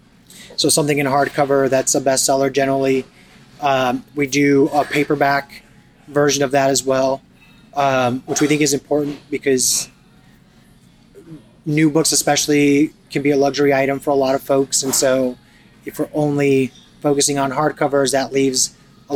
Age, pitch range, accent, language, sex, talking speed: 20-39, 135-150 Hz, American, English, male, 155 wpm